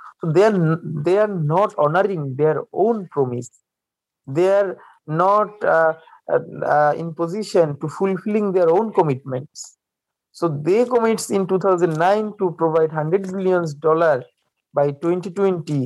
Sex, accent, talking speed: male, Indian, 125 wpm